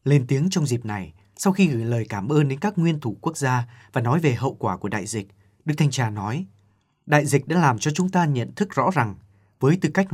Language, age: Vietnamese, 20-39